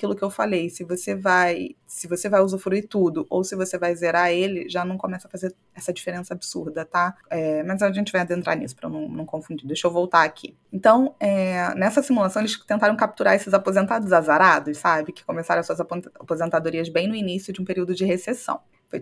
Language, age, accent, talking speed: Portuguese, 20-39, Brazilian, 210 wpm